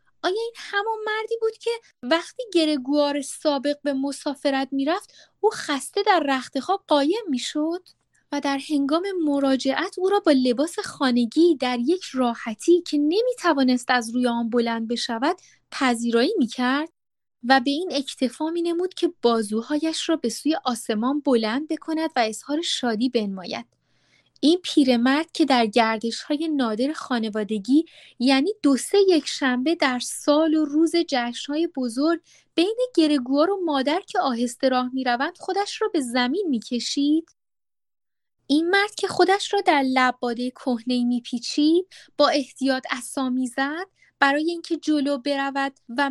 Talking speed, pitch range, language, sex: 145 wpm, 255-335 Hz, Persian, female